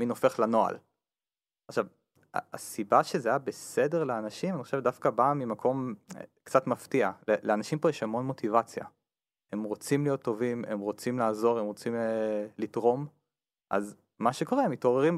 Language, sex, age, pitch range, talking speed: Hebrew, male, 30-49, 110-150 Hz, 140 wpm